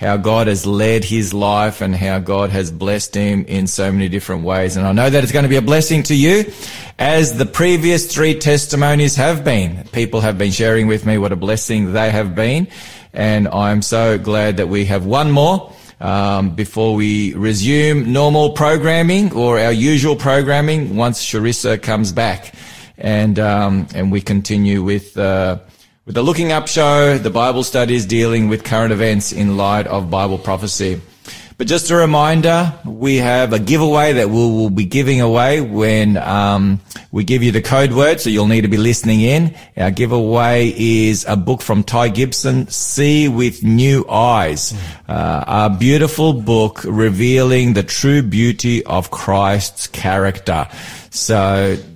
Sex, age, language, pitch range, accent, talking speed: male, 20-39, English, 100-135 Hz, Australian, 170 wpm